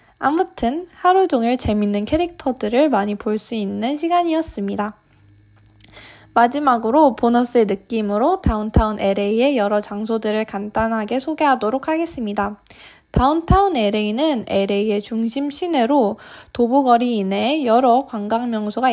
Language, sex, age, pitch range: Korean, female, 20-39, 210-290 Hz